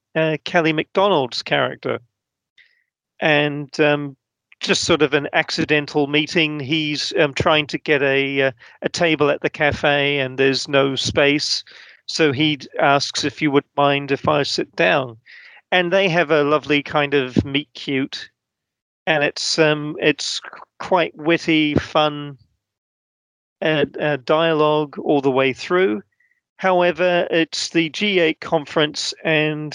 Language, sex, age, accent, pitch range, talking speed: English, male, 40-59, British, 135-155 Hz, 135 wpm